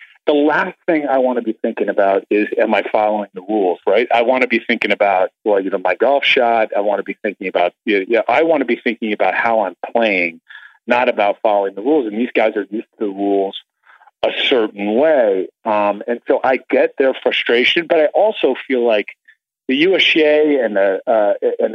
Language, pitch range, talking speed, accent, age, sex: English, 115-145 Hz, 220 wpm, American, 40-59, male